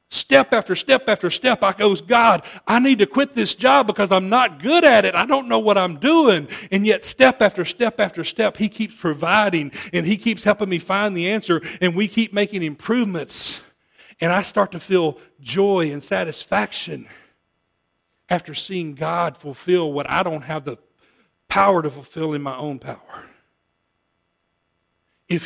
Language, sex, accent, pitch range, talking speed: English, male, American, 160-200 Hz, 175 wpm